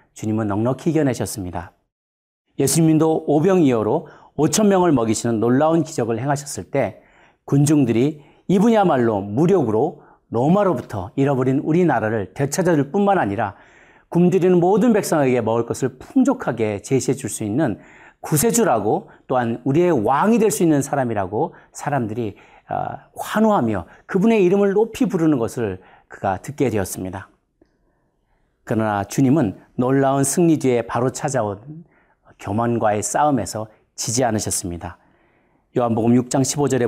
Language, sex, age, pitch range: Korean, male, 40-59, 115-165 Hz